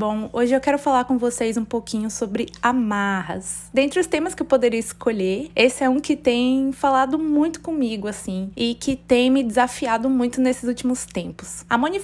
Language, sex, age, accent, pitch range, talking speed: Portuguese, female, 20-39, Brazilian, 205-255 Hz, 190 wpm